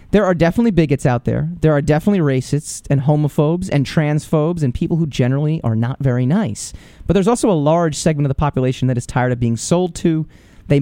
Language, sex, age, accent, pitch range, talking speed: English, male, 30-49, American, 130-170 Hz, 215 wpm